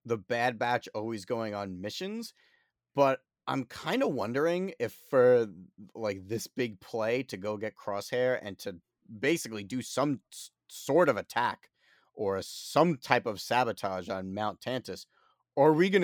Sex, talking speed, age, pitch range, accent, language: male, 155 wpm, 30-49, 110-145 Hz, American, English